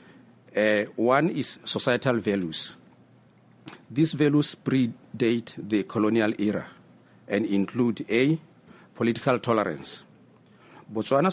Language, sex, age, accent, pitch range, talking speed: English, male, 50-69, South African, 105-130 Hz, 90 wpm